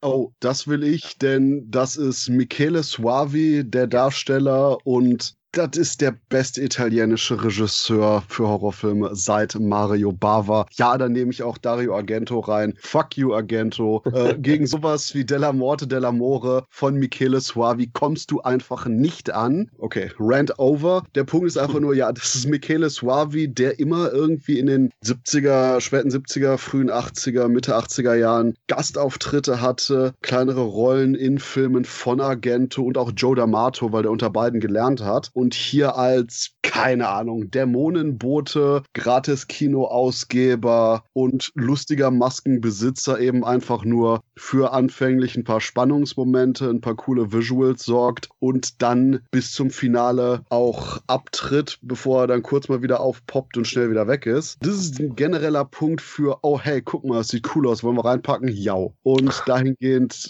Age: 30-49